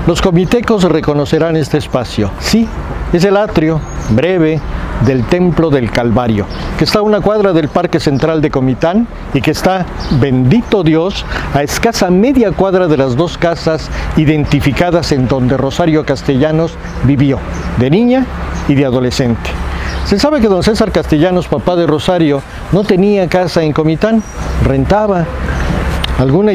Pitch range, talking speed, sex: 140-190 Hz, 145 wpm, male